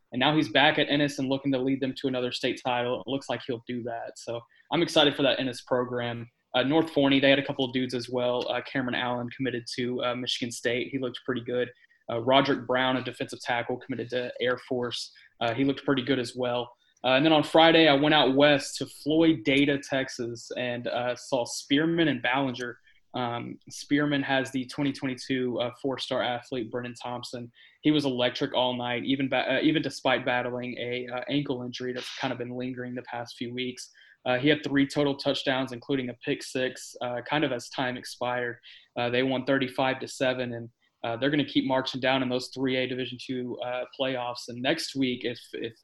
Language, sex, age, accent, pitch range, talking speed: English, male, 20-39, American, 125-135 Hz, 210 wpm